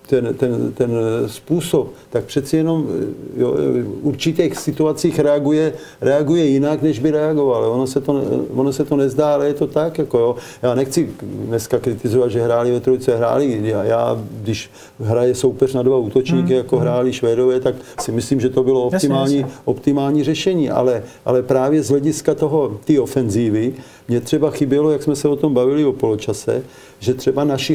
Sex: male